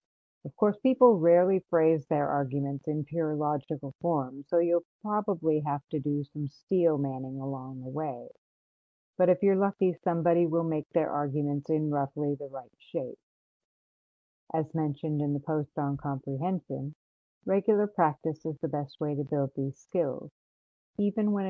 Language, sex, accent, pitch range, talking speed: English, female, American, 145-175 Hz, 155 wpm